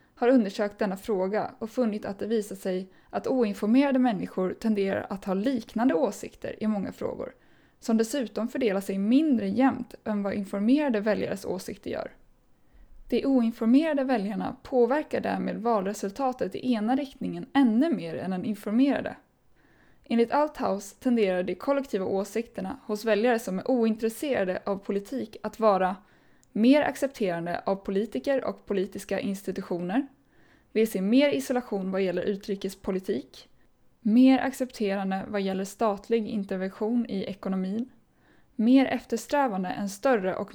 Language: Swedish